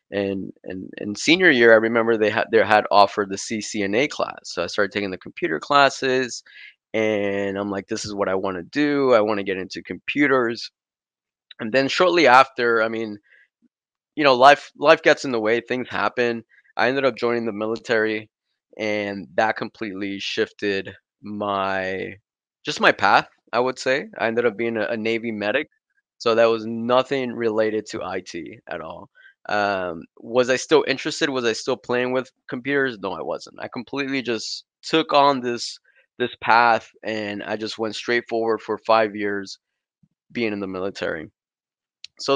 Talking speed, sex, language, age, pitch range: 175 wpm, male, English, 20-39, 105-130 Hz